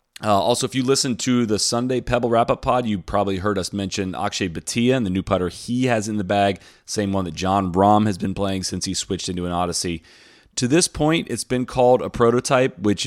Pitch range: 95-115 Hz